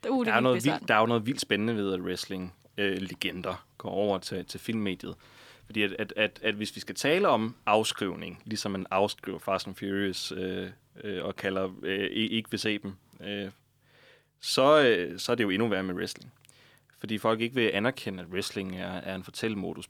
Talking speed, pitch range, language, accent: 185 wpm, 100-130 Hz, Danish, native